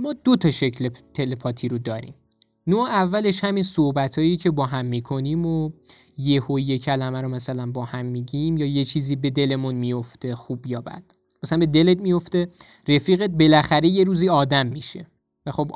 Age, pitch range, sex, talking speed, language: 20-39, 130-180 Hz, male, 175 wpm, Persian